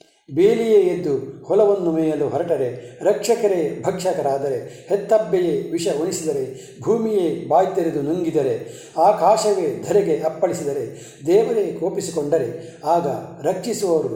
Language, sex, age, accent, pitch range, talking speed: Kannada, male, 60-79, native, 160-210 Hz, 85 wpm